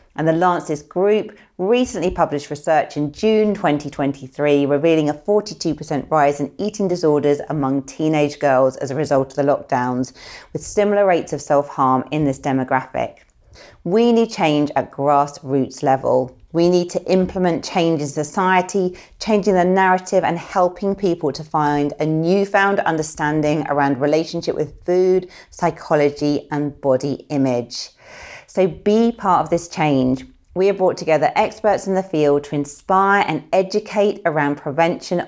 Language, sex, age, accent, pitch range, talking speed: English, female, 30-49, British, 145-190 Hz, 145 wpm